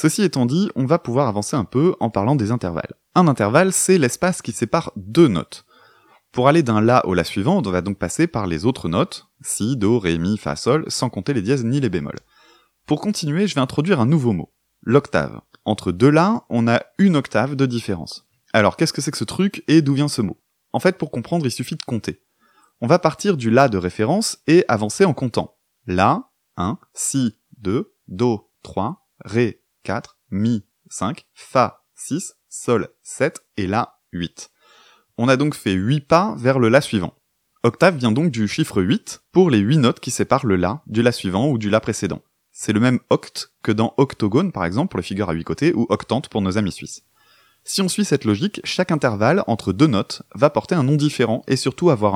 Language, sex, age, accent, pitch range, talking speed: French, male, 30-49, French, 105-150 Hz, 215 wpm